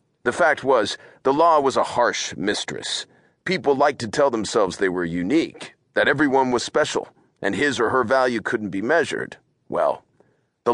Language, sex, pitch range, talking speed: English, male, 110-135 Hz, 175 wpm